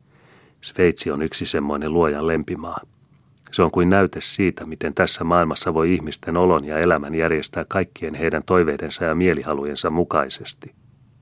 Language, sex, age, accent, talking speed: Finnish, male, 30-49, native, 140 wpm